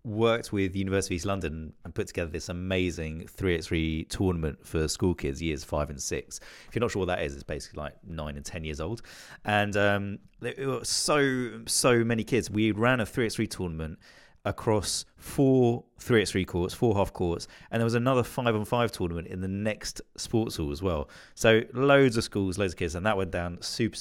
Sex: male